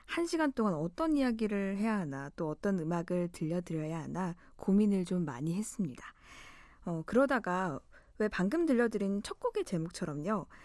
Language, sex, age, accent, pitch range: Korean, female, 20-39, native, 175-245 Hz